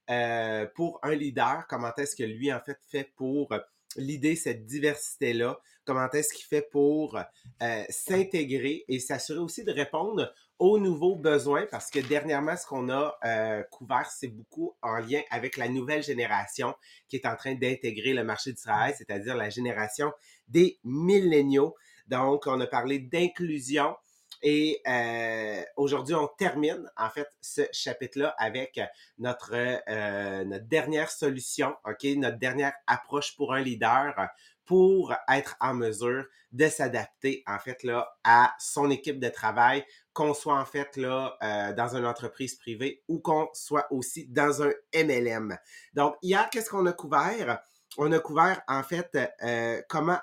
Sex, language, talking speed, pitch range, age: male, English, 155 wpm, 125-155 Hz, 30-49